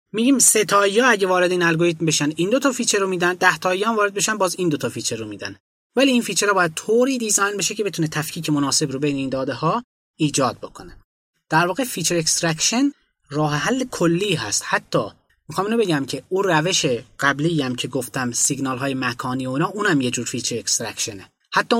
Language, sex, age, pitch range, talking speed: Persian, male, 30-49, 145-205 Hz, 200 wpm